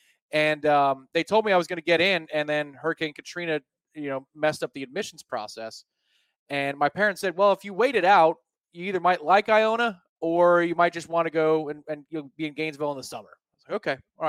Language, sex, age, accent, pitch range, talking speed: English, male, 20-39, American, 135-170 Hz, 230 wpm